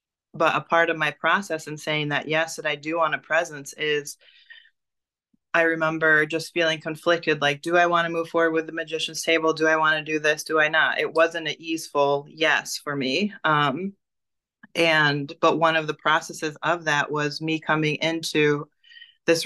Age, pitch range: 20-39, 150-165 Hz